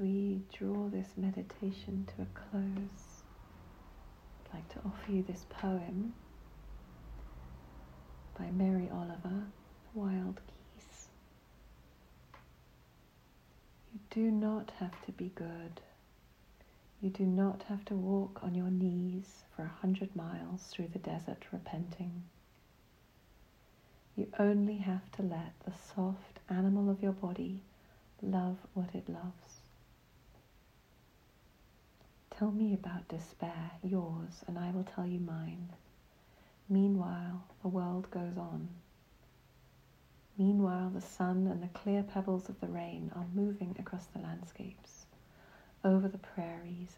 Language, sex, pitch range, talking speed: English, female, 165-195 Hz, 120 wpm